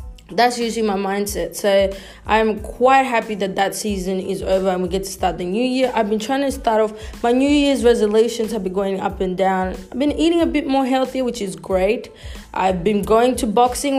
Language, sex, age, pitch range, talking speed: English, female, 20-39, 190-235 Hz, 225 wpm